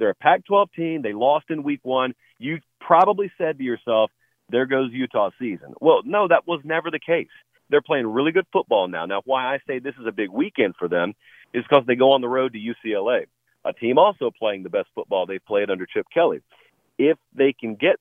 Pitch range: 115-150 Hz